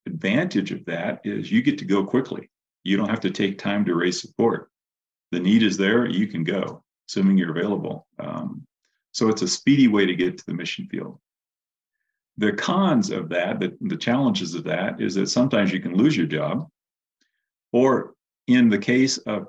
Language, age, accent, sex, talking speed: English, 40-59, American, male, 190 wpm